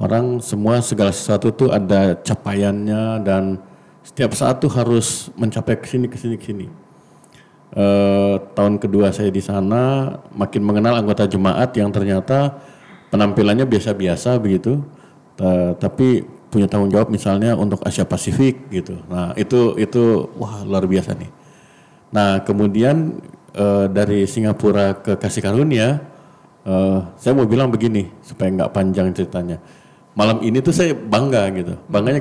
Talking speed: 130 wpm